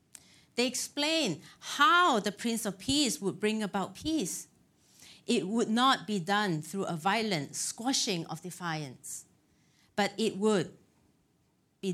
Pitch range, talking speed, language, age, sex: 160-220 Hz, 130 wpm, English, 40-59, female